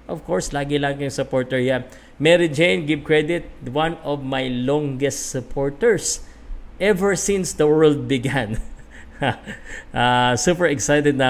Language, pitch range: Filipino, 120-155 Hz